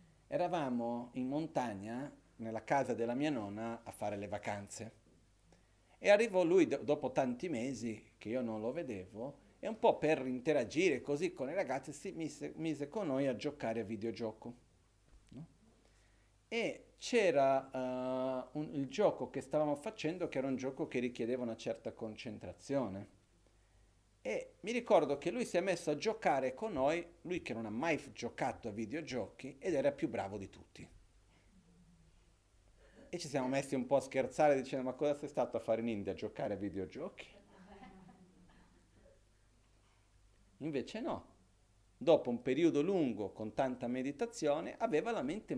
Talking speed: 155 wpm